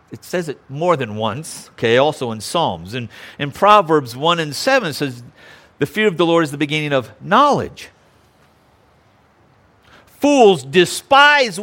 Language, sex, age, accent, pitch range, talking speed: English, male, 50-69, American, 120-175 Hz, 155 wpm